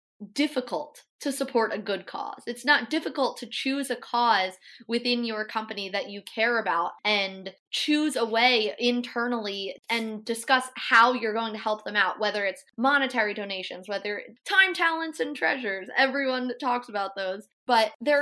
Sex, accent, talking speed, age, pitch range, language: female, American, 165 wpm, 20-39, 220-285 Hz, English